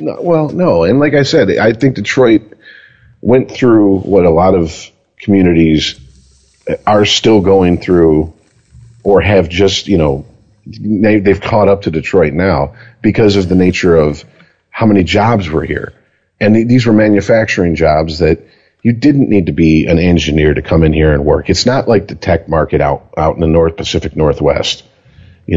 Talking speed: 175 wpm